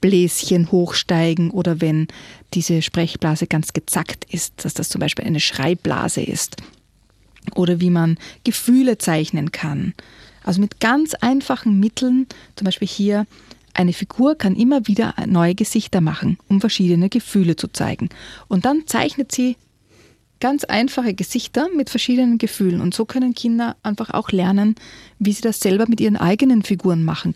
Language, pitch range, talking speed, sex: German, 180-220 Hz, 150 wpm, female